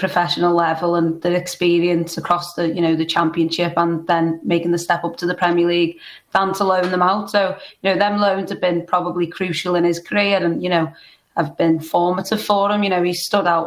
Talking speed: 225 wpm